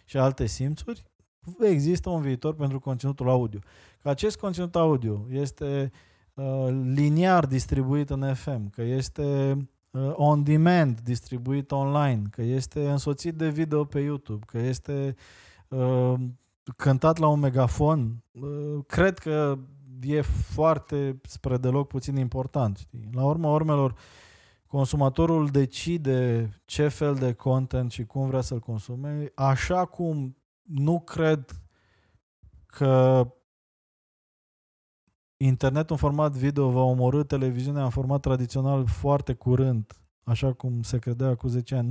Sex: male